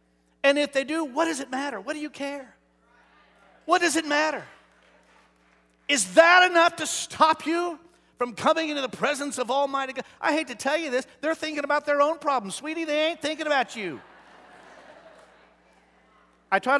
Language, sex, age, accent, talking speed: English, male, 50-69, American, 180 wpm